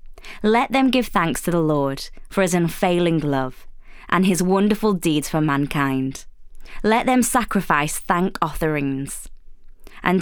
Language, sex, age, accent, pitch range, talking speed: English, female, 20-39, British, 145-200 Hz, 135 wpm